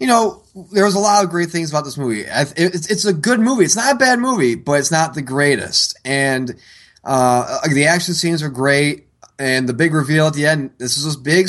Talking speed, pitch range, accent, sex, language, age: 225 wpm, 125-170 Hz, American, male, English, 20-39